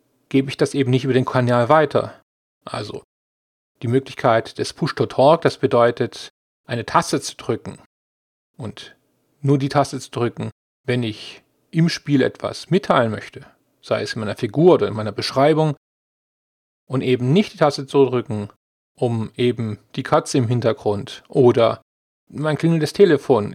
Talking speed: 150 wpm